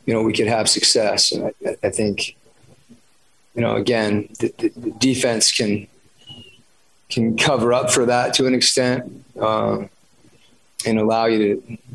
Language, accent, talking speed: English, American, 150 wpm